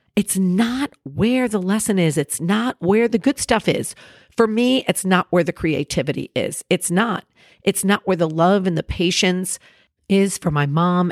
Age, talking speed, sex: 50-69, 190 wpm, female